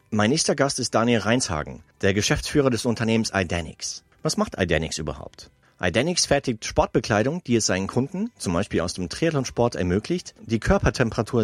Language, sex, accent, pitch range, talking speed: German, male, German, 100-125 Hz, 155 wpm